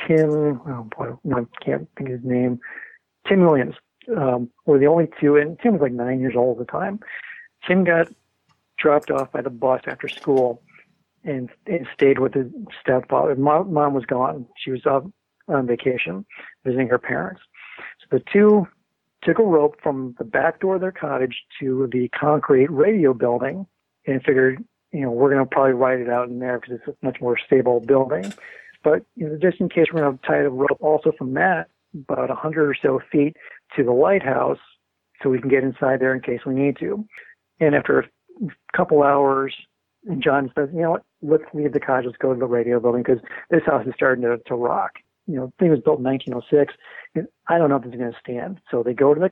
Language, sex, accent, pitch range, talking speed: English, male, American, 130-160 Hz, 215 wpm